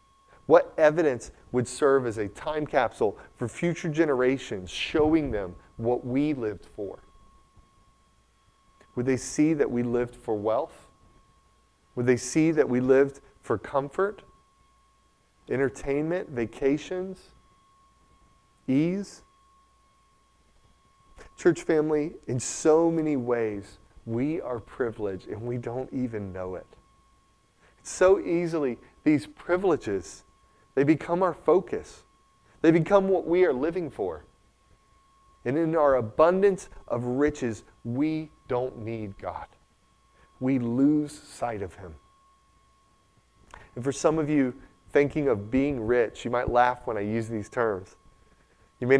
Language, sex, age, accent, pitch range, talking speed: English, male, 30-49, American, 115-155 Hz, 120 wpm